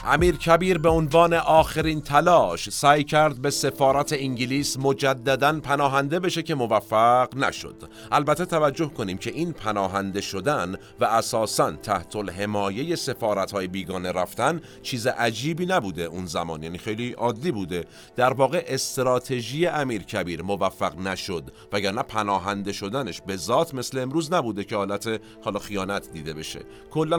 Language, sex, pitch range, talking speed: Persian, male, 100-145 Hz, 140 wpm